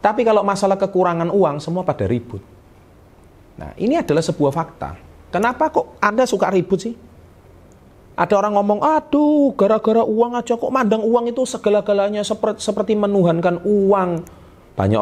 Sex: male